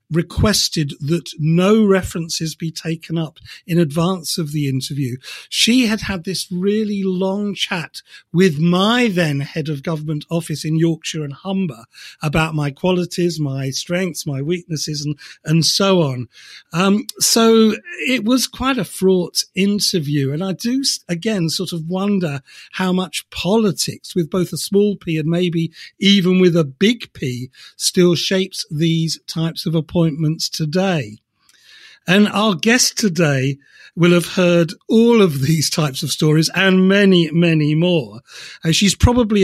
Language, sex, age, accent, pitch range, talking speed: English, male, 50-69, British, 155-190 Hz, 150 wpm